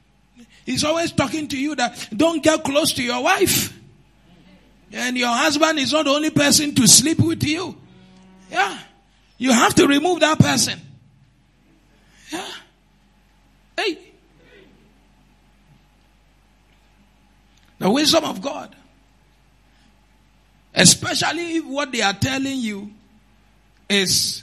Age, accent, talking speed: 50-69, Nigerian, 110 wpm